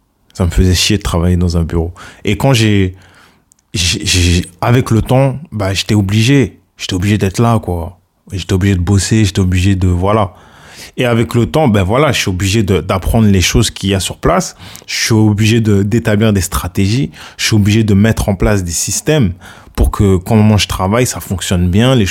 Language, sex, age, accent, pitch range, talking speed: French, male, 20-39, French, 95-120 Hz, 210 wpm